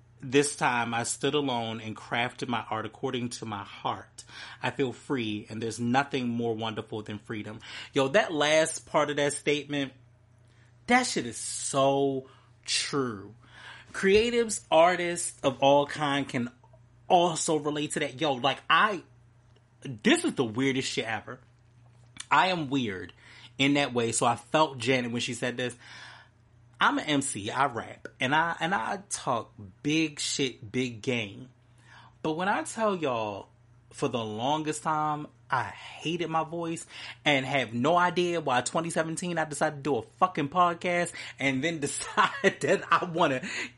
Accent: American